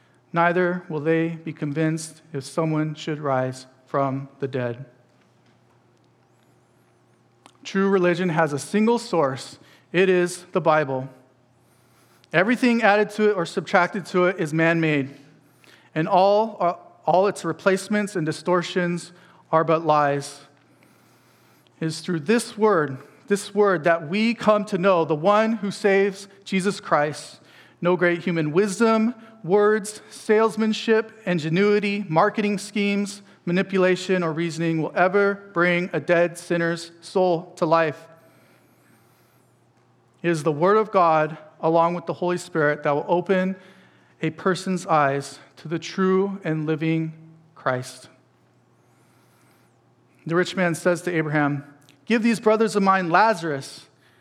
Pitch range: 155-195 Hz